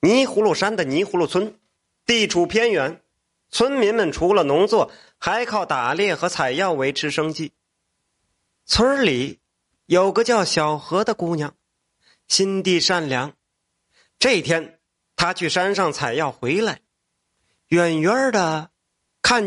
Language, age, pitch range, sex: Chinese, 30-49, 165-230 Hz, male